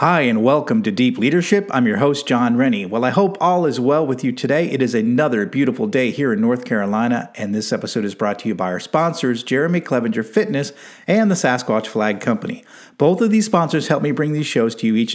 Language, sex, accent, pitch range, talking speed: English, male, American, 120-175 Hz, 235 wpm